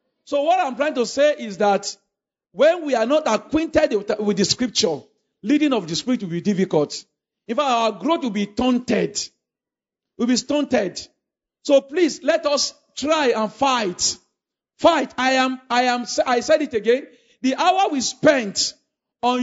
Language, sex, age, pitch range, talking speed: English, male, 50-69, 235-305 Hz, 165 wpm